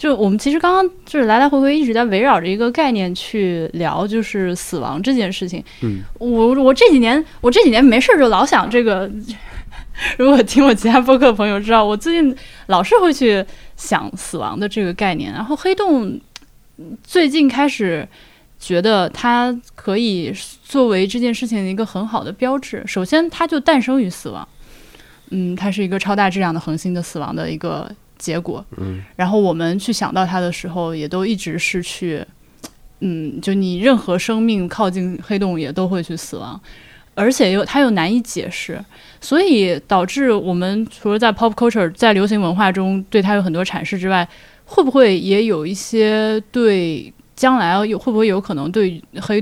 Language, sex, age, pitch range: Chinese, female, 10-29, 180-240 Hz